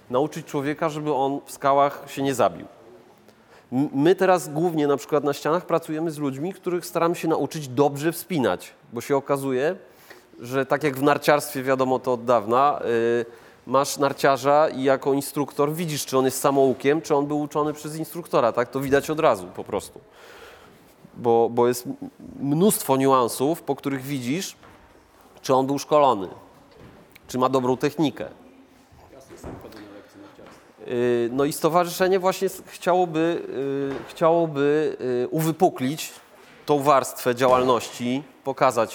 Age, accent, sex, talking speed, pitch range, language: 30-49, native, male, 135 wpm, 130-155 Hz, Polish